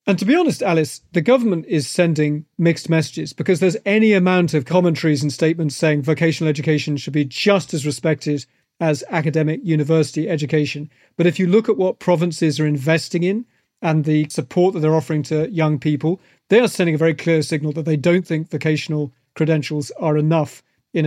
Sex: male